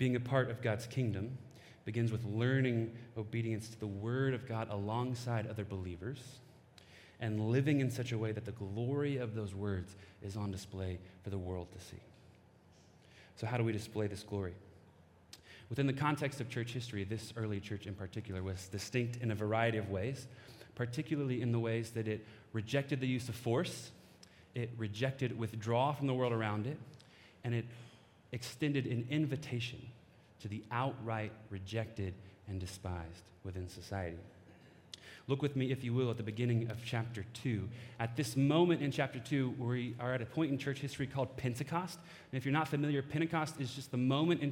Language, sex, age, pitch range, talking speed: English, male, 30-49, 105-135 Hz, 180 wpm